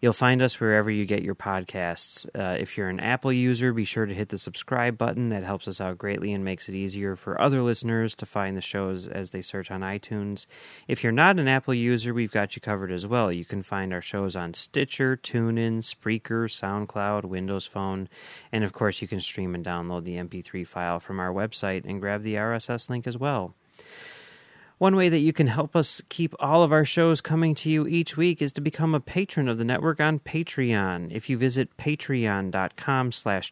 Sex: male